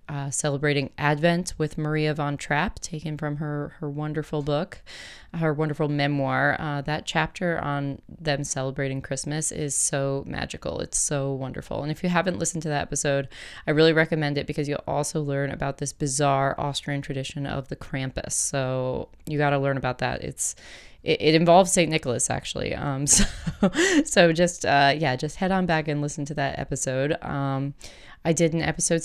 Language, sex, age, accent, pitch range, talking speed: English, female, 20-39, American, 145-165 Hz, 180 wpm